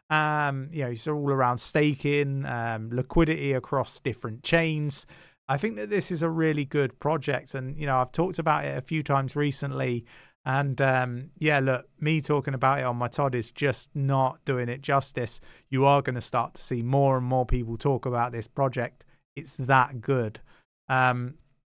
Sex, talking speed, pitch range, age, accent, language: male, 190 wpm, 130-155 Hz, 30-49, British, English